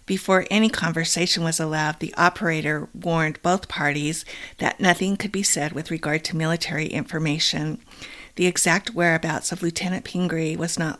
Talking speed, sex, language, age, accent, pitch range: 155 wpm, female, English, 50-69, American, 150-175 Hz